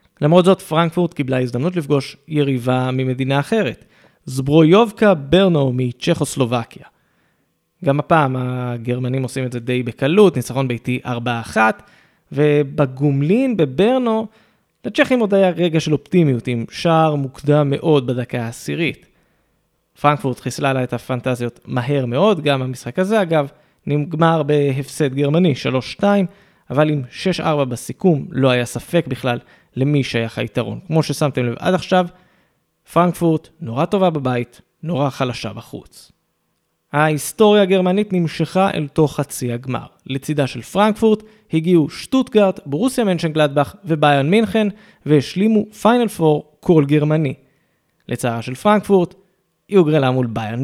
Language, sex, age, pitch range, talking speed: Hebrew, male, 20-39, 130-180 Hz, 120 wpm